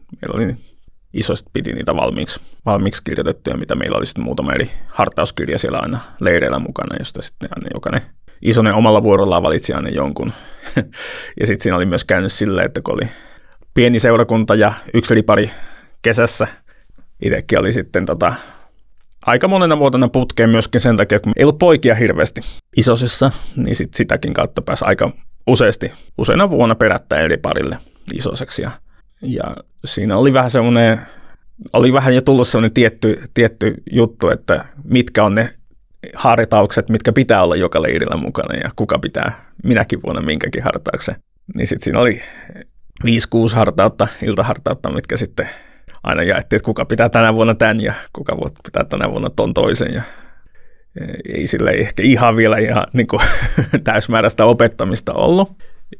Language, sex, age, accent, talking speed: Finnish, male, 30-49, native, 150 wpm